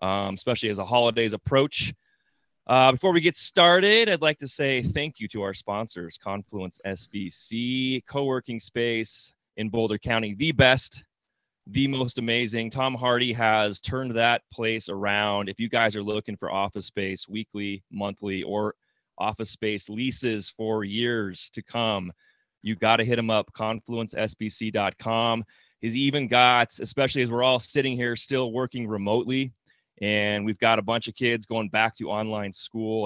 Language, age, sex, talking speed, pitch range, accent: English, 30-49, male, 160 wpm, 100-125 Hz, American